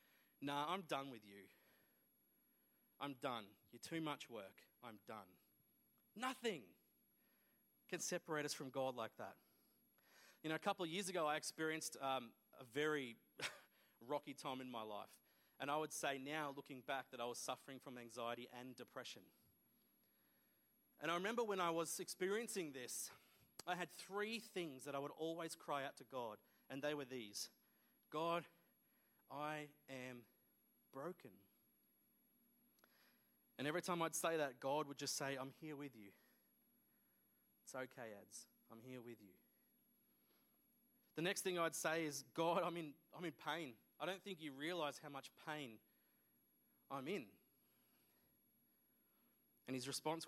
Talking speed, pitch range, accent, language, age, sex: 150 wpm, 130-165 Hz, Australian, English, 30-49, male